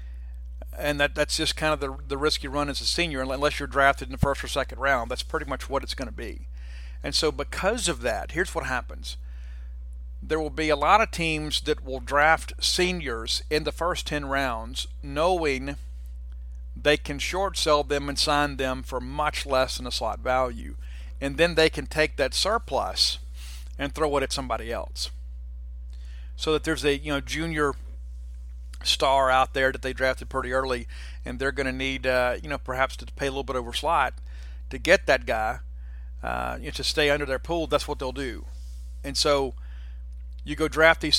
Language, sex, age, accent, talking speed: English, male, 50-69, American, 195 wpm